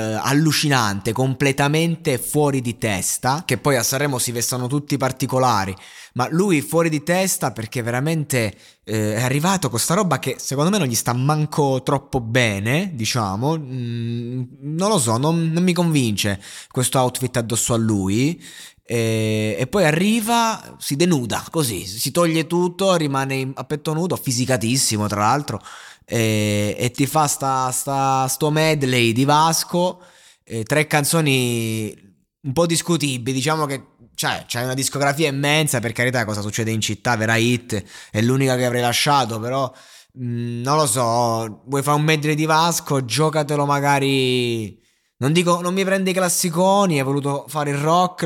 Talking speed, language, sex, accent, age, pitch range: 160 wpm, Italian, male, native, 20-39, 120-155 Hz